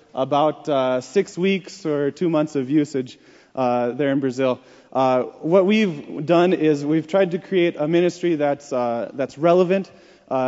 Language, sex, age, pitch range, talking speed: English, male, 20-39, 130-165 Hz, 165 wpm